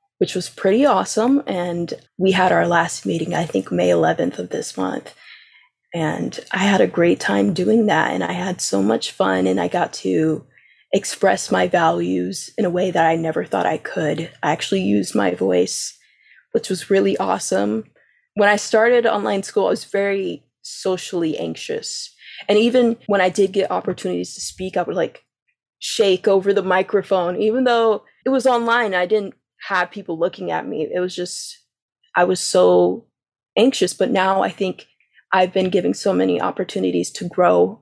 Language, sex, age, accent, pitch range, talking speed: English, female, 20-39, American, 165-220 Hz, 180 wpm